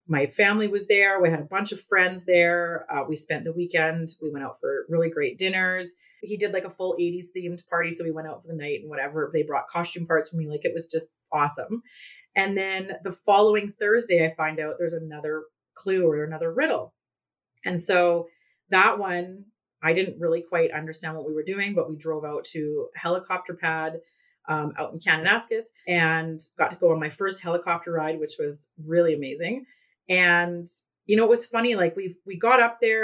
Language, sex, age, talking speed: English, female, 30-49, 205 wpm